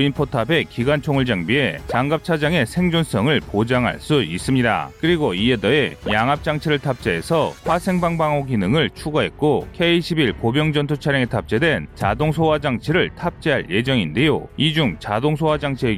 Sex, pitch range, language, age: male, 120-155 Hz, Korean, 30-49